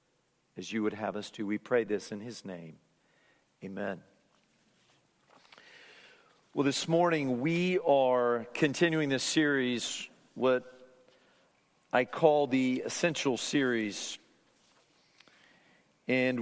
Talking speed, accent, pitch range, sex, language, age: 100 wpm, American, 135-165 Hz, male, English, 50-69